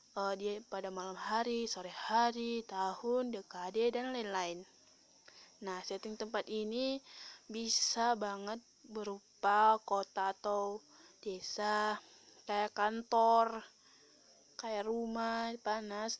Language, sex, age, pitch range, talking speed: Indonesian, female, 20-39, 200-230 Hz, 90 wpm